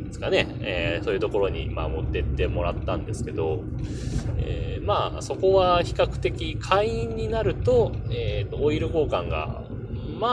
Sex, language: male, Japanese